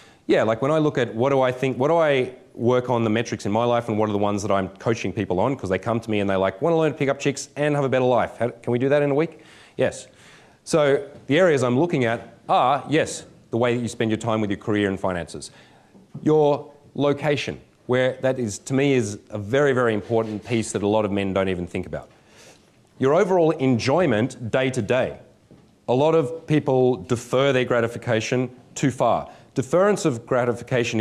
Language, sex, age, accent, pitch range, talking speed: English, male, 30-49, Australian, 105-130 Hz, 230 wpm